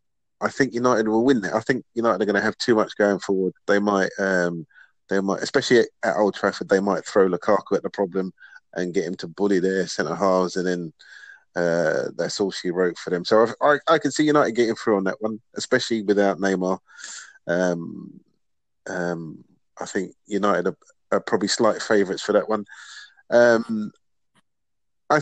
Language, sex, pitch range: English, male, 95-110 Hz